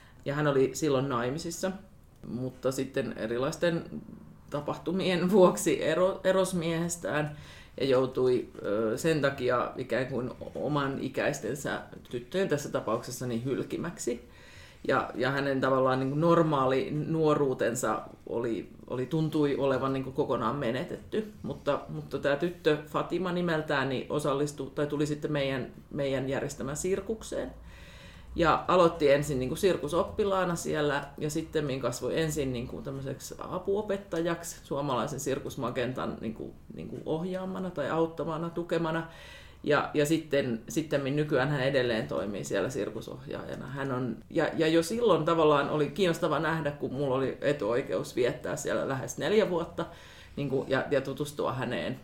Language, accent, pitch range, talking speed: Finnish, native, 135-170 Hz, 125 wpm